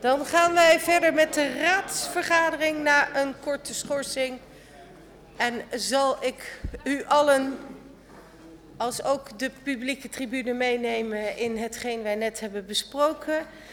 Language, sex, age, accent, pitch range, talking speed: Dutch, female, 40-59, Dutch, 210-275 Hz, 120 wpm